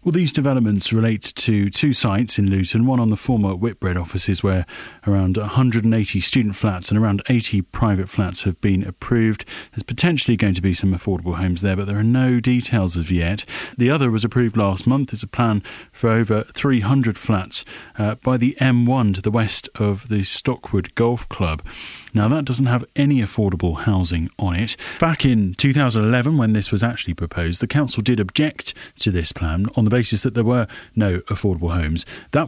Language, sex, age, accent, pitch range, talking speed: English, male, 30-49, British, 95-125 Hz, 190 wpm